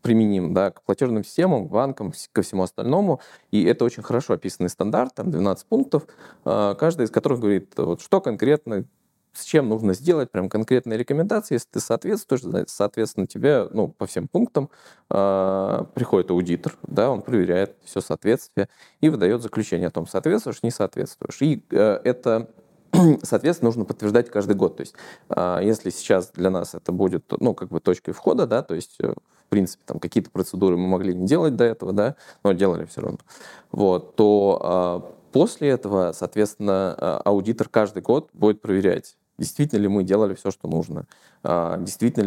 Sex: male